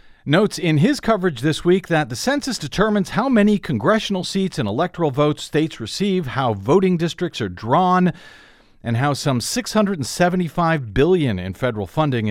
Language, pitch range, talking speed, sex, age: English, 125-180 Hz, 155 wpm, male, 50-69